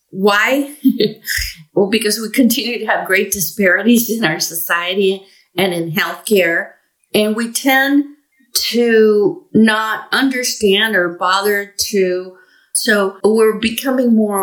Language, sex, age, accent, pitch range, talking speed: English, female, 50-69, American, 185-225 Hz, 115 wpm